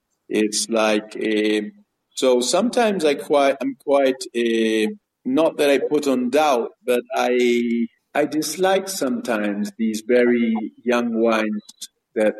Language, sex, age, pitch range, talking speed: English, male, 50-69, 105-145 Hz, 125 wpm